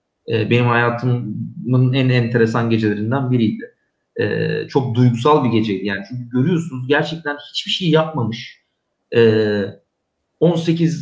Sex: male